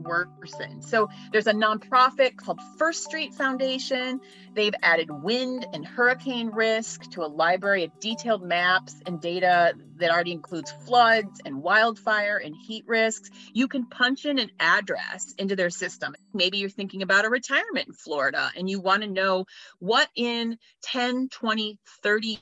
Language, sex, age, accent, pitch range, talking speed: English, female, 30-49, American, 185-245 Hz, 160 wpm